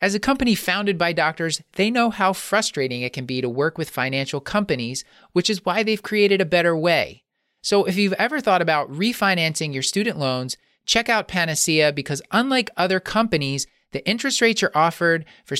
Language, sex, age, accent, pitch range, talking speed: English, male, 30-49, American, 145-200 Hz, 190 wpm